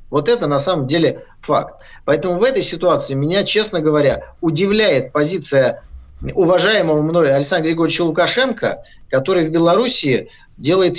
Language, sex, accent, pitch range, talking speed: Russian, male, native, 145-185 Hz, 130 wpm